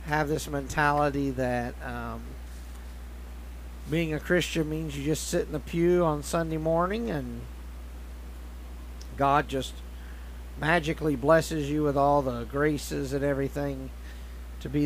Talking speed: 130 wpm